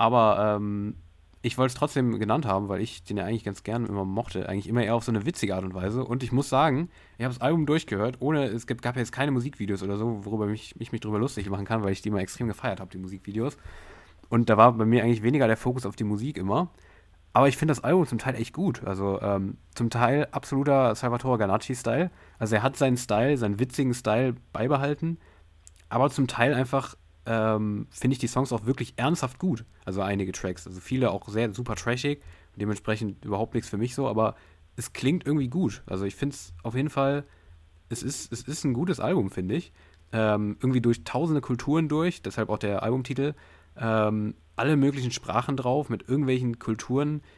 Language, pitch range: German, 100-130 Hz